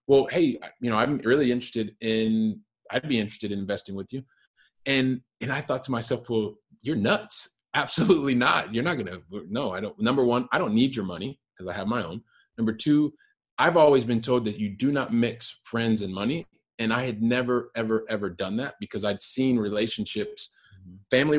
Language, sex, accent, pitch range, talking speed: English, male, American, 105-125 Hz, 200 wpm